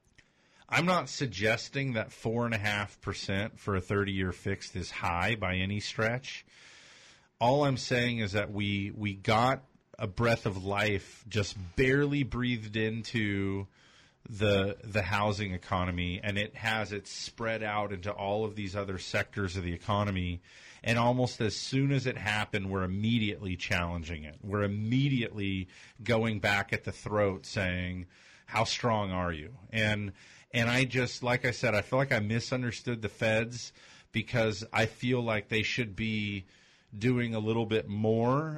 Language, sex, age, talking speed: English, male, 40-59, 160 wpm